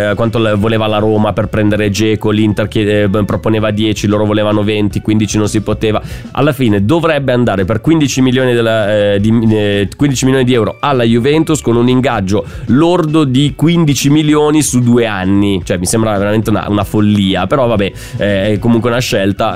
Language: Italian